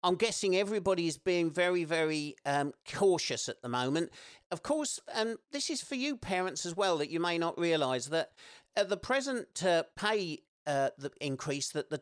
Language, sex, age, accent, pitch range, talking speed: English, male, 50-69, British, 140-195 Hz, 200 wpm